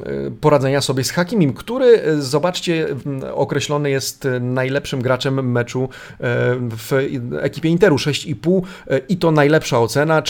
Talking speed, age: 110 wpm, 40-59